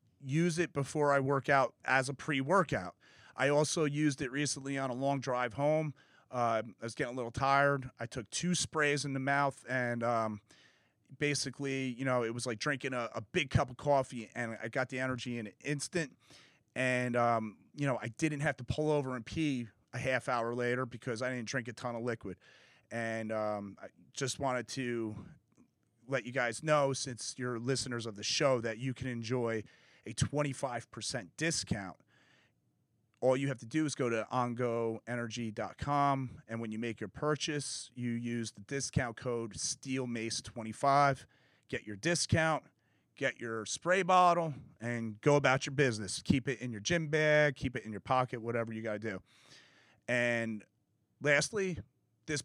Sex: male